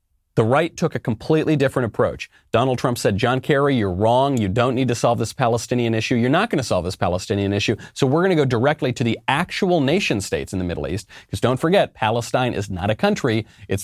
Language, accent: English, American